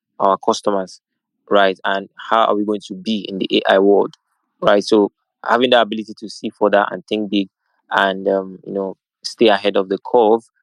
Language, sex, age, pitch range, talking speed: English, male, 20-39, 100-120 Hz, 190 wpm